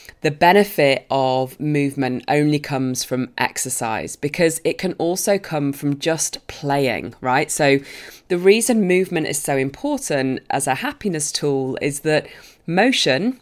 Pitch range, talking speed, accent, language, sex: 140-190 Hz, 140 wpm, British, English, female